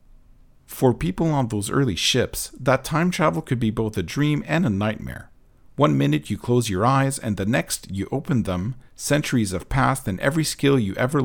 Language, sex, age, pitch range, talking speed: English, male, 50-69, 105-135 Hz, 195 wpm